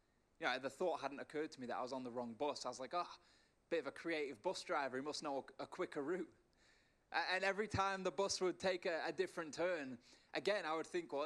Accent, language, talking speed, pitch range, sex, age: British, English, 245 wpm, 140-185 Hz, male, 20-39